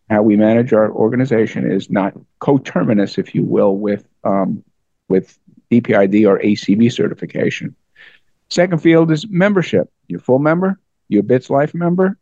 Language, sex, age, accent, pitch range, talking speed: English, male, 50-69, American, 110-150 Hz, 150 wpm